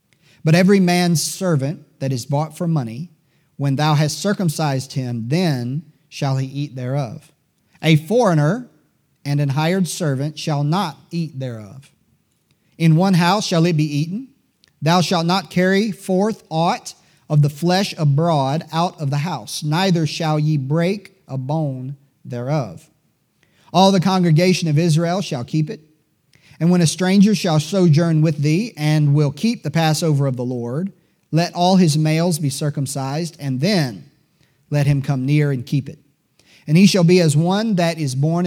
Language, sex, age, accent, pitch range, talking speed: English, male, 40-59, American, 145-175 Hz, 165 wpm